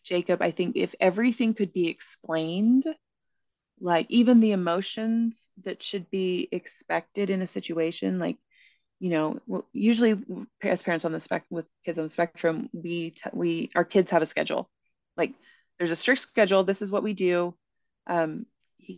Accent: American